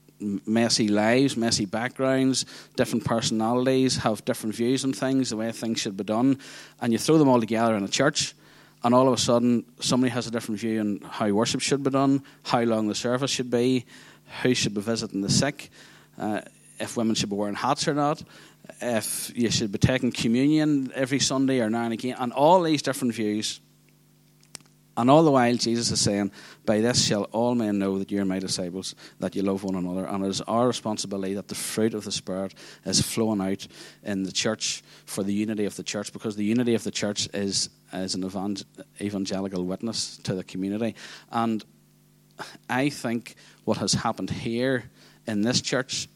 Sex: male